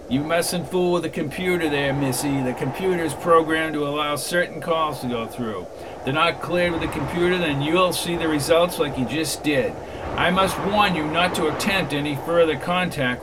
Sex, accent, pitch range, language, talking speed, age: male, American, 135-180 Hz, English, 200 wpm, 50-69